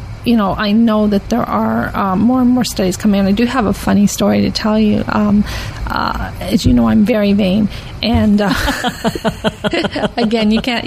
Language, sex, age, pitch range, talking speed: English, female, 40-59, 195-220 Hz, 200 wpm